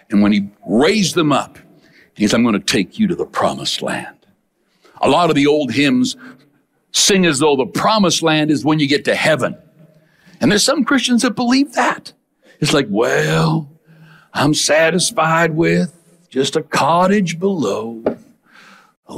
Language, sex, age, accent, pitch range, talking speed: English, male, 60-79, American, 135-195 Hz, 165 wpm